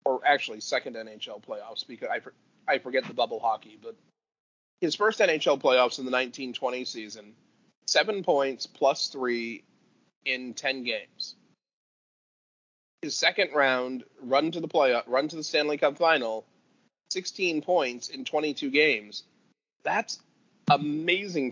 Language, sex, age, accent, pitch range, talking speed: English, male, 30-49, American, 120-150 Hz, 135 wpm